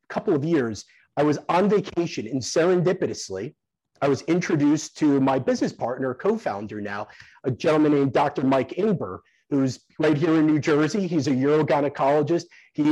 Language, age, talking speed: English, 30-49, 160 wpm